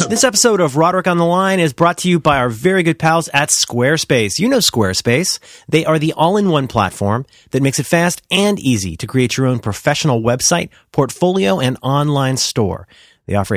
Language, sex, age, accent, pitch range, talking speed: English, male, 30-49, American, 115-180 Hz, 195 wpm